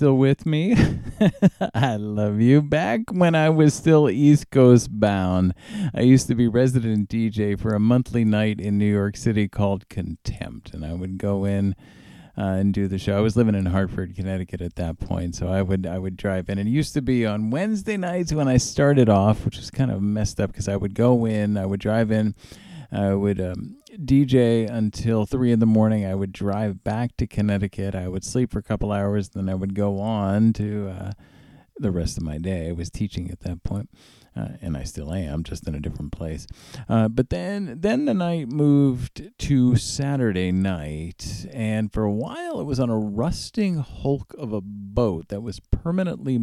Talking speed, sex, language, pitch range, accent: 205 wpm, male, English, 95-125 Hz, American